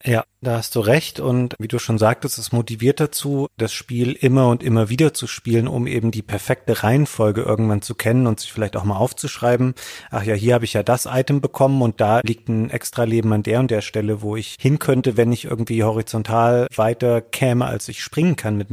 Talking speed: 225 wpm